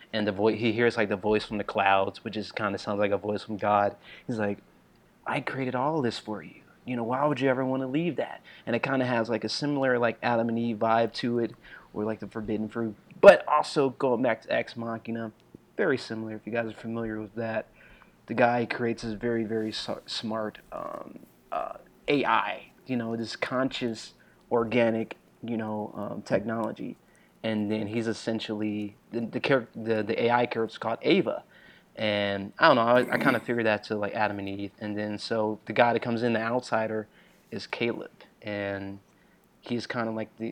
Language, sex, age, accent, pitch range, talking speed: English, male, 30-49, American, 110-120 Hz, 205 wpm